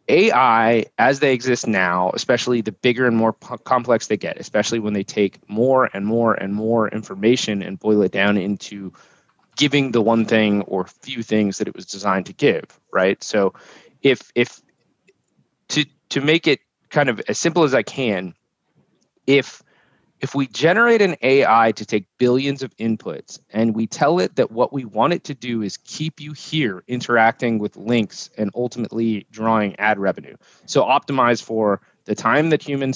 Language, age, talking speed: English, 20-39, 175 wpm